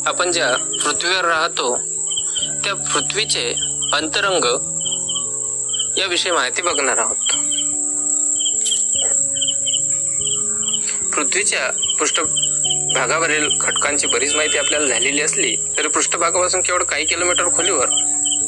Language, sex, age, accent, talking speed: Marathi, male, 20-39, native, 80 wpm